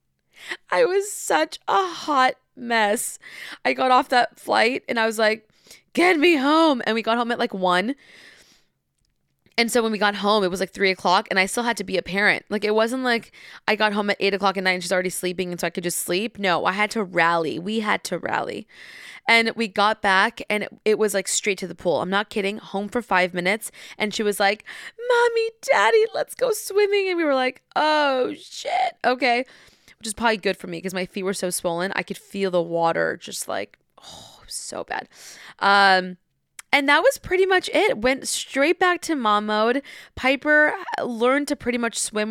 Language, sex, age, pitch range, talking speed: English, female, 20-39, 195-250 Hz, 215 wpm